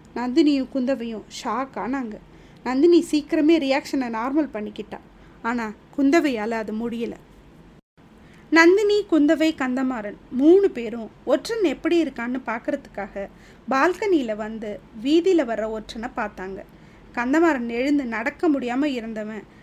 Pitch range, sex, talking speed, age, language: 230-315 Hz, female, 100 wpm, 20-39, Tamil